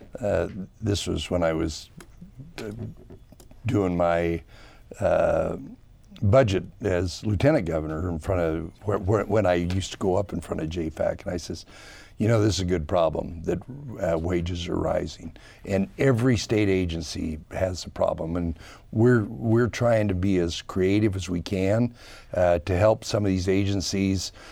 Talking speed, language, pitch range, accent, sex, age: 170 wpm, English, 90-105 Hz, American, male, 60-79